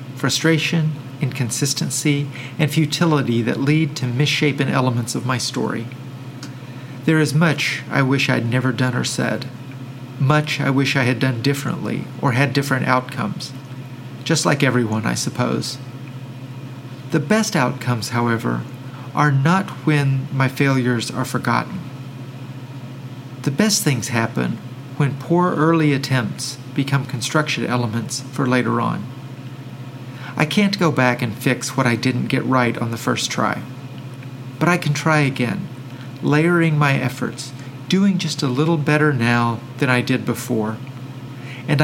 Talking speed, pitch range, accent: 140 wpm, 125-145 Hz, American